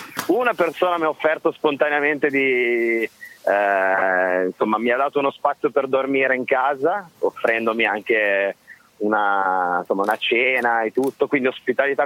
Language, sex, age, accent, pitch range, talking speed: Italian, male, 30-49, native, 120-170 Hz, 140 wpm